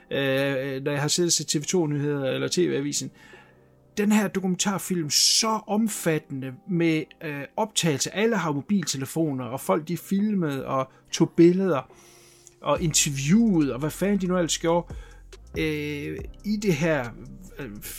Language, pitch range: Danish, 135-185 Hz